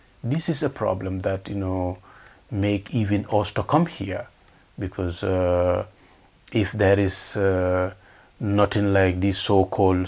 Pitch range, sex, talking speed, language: 100-135 Hz, male, 135 wpm, English